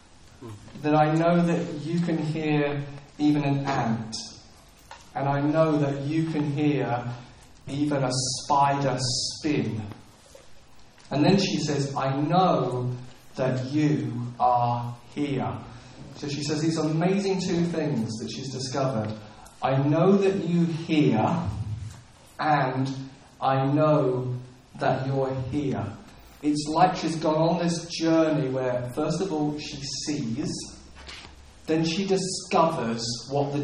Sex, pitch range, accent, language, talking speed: male, 125-155 Hz, British, English, 125 wpm